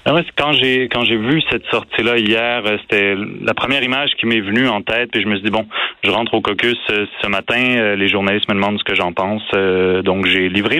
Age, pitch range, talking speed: 30-49, 105-130 Hz, 220 wpm